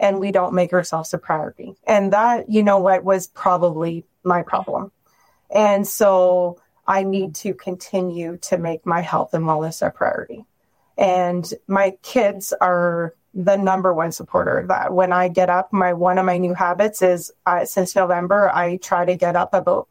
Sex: female